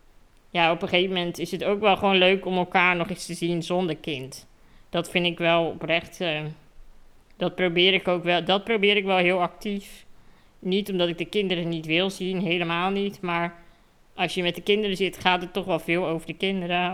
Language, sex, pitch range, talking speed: Dutch, female, 170-190 Hz, 215 wpm